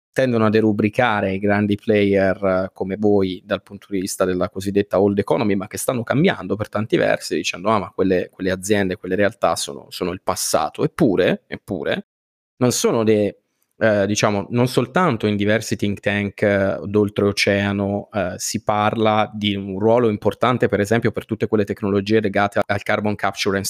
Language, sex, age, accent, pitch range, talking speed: Italian, male, 20-39, native, 100-110 Hz, 165 wpm